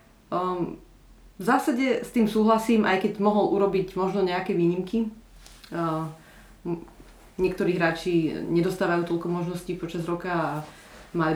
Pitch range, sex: 165-180 Hz, female